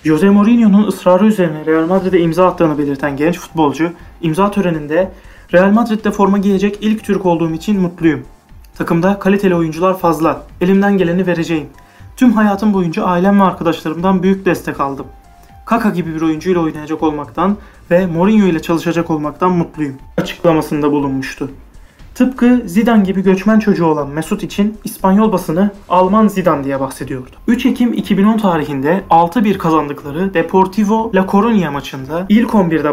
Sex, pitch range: male, 160-200 Hz